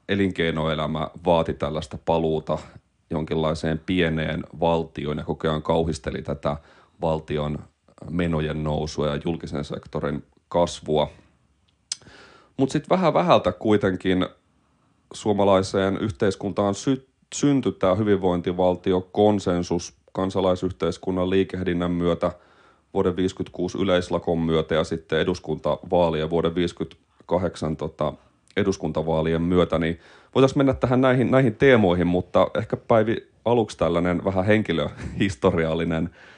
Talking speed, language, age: 95 wpm, Finnish, 30-49